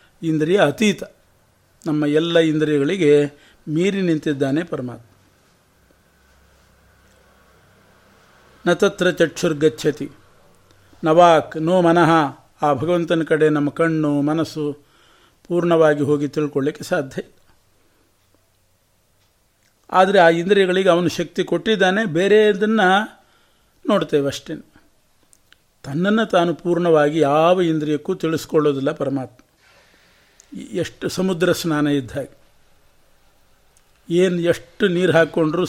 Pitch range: 145-180 Hz